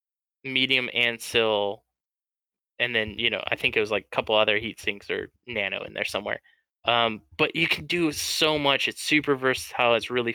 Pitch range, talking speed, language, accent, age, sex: 110-130 Hz, 195 wpm, English, American, 10-29, male